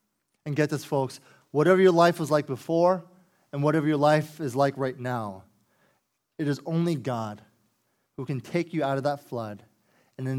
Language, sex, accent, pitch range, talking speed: English, male, American, 115-145 Hz, 185 wpm